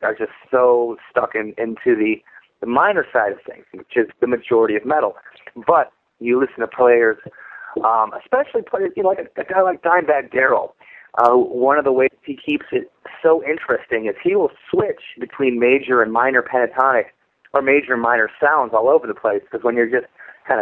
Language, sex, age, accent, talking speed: English, male, 30-49, American, 200 wpm